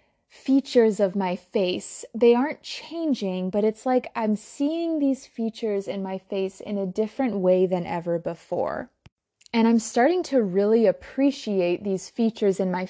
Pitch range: 190-235 Hz